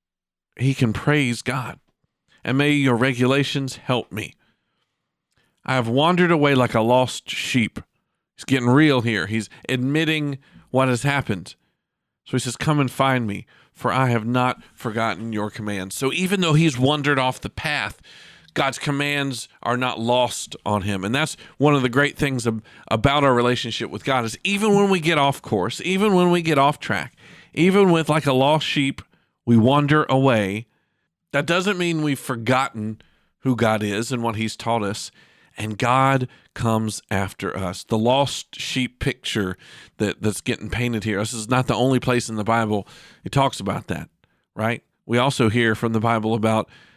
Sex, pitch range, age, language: male, 110-140 Hz, 40-59, English